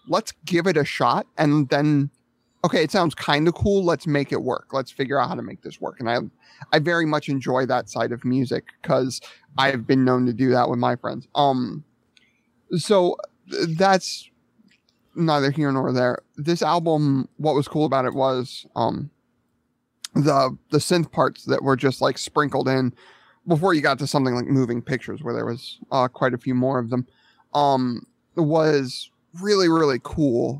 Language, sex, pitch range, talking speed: English, male, 125-155 Hz, 185 wpm